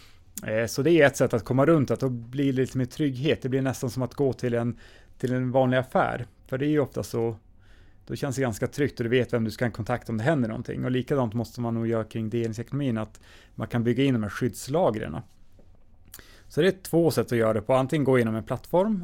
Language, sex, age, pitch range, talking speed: Swedish, male, 30-49, 110-130 Hz, 250 wpm